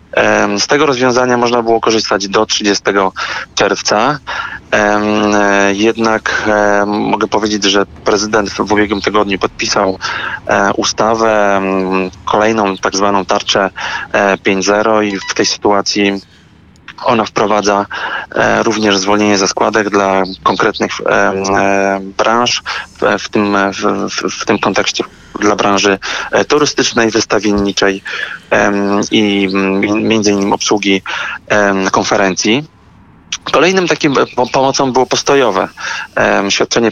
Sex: male